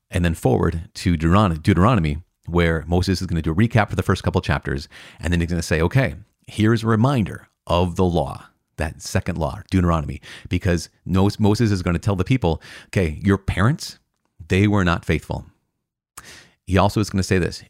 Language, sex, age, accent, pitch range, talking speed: English, male, 30-49, American, 80-105 Hz, 195 wpm